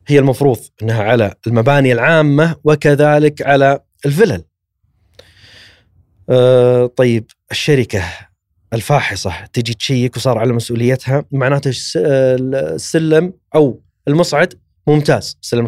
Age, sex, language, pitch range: 30-49, male, Arabic, 100-150 Hz